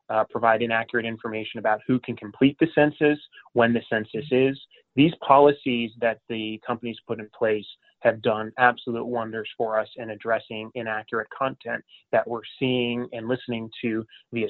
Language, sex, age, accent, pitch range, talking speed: English, male, 30-49, American, 115-140 Hz, 160 wpm